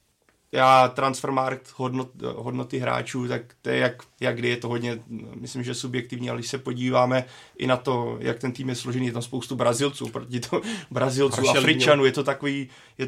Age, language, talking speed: 30-49, Czech, 185 wpm